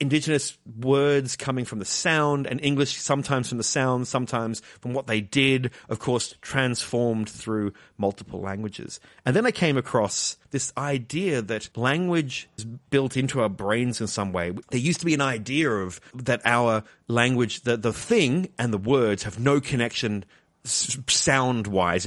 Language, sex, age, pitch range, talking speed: English, male, 30-49, 110-140 Hz, 165 wpm